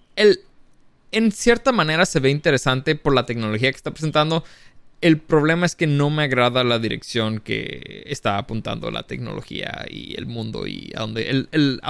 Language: Spanish